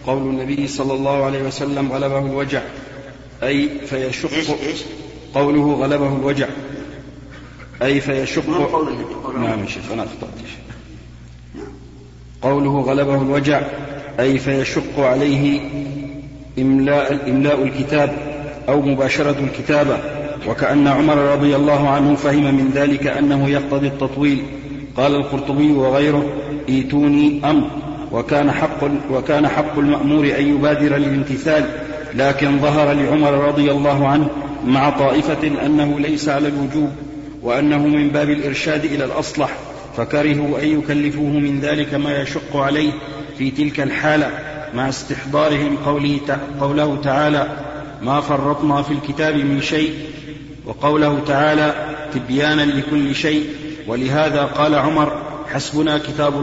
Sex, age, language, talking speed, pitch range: male, 50-69, Arabic, 115 wpm, 140-150 Hz